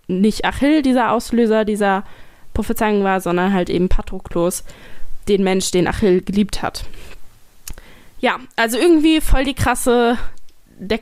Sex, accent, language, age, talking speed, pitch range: female, German, German, 20-39, 130 wpm, 180-225 Hz